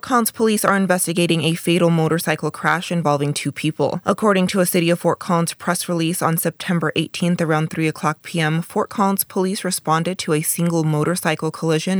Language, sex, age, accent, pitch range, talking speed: English, female, 20-39, American, 150-180 Hz, 185 wpm